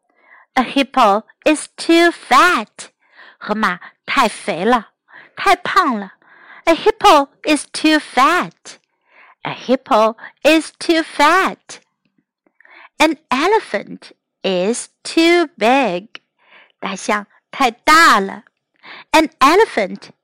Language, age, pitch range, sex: Chinese, 60-79, 230-320 Hz, female